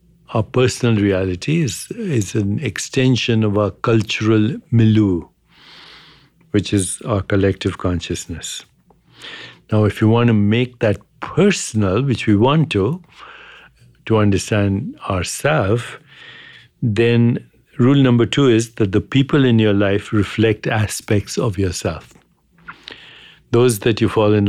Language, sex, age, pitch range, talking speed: English, male, 60-79, 100-120 Hz, 125 wpm